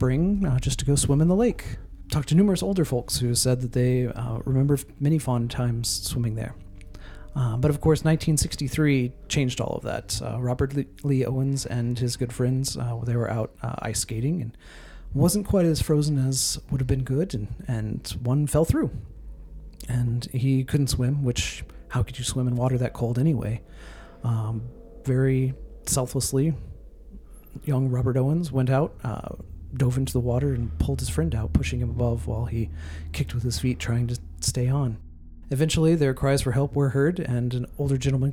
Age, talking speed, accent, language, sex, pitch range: 40-59, 185 wpm, American, English, male, 115-135 Hz